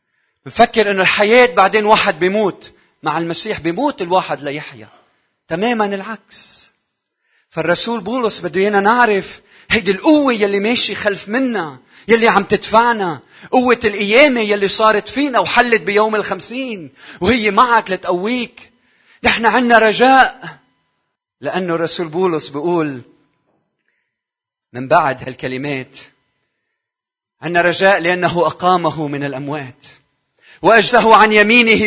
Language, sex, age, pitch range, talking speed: Arabic, male, 30-49, 170-225 Hz, 105 wpm